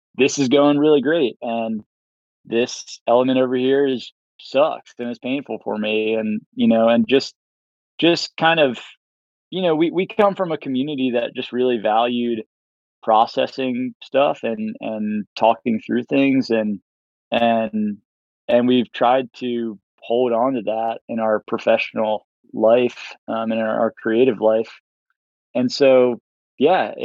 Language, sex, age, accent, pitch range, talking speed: English, male, 20-39, American, 110-130 Hz, 150 wpm